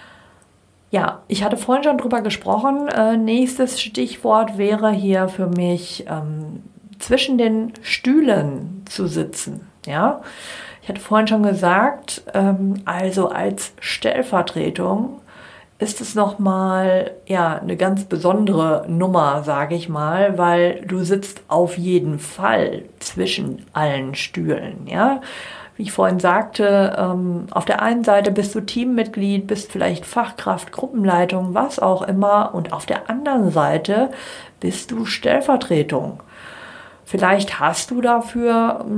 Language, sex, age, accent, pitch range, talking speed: German, female, 50-69, German, 185-230 Hz, 125 wpm